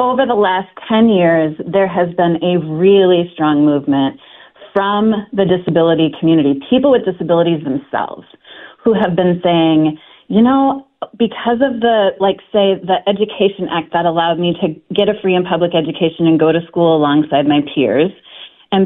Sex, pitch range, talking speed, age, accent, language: female, 160-205 Hz, 165 wpm, 30-49, American, English